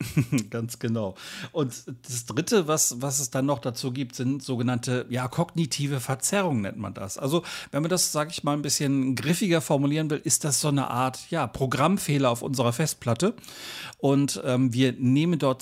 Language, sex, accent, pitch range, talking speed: German, male, German, 115-145 Hz, 180 wpm